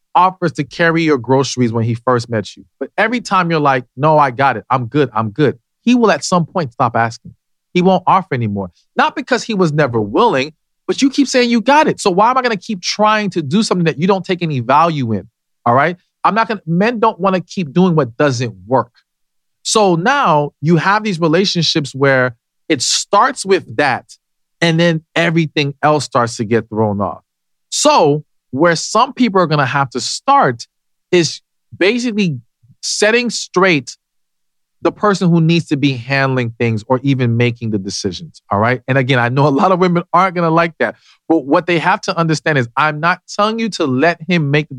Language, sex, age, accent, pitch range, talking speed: English, male, 40-59, American, 130-185 Hz, 210 wpm